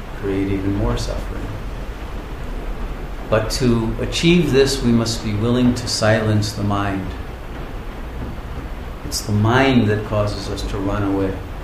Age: 50-69